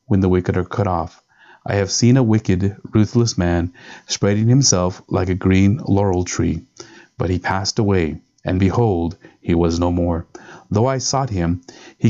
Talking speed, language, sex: 175 wpm, English, male